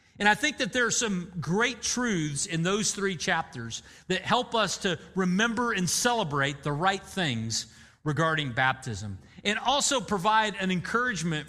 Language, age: English, 40-59